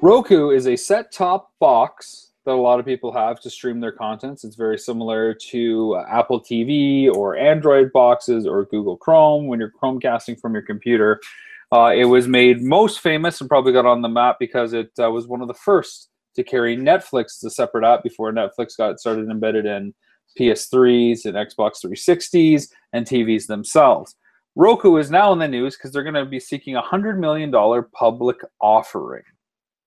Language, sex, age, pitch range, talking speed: English, male, 30-49, 115-145 Hz, 185 wpm